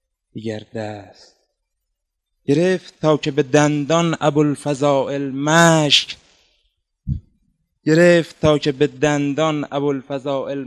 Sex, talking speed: male, 95 wpm